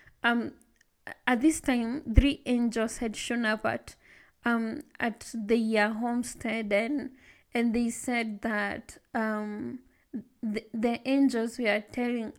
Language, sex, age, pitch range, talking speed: English, female, 20-39, 225-255 Hz, 115 wpm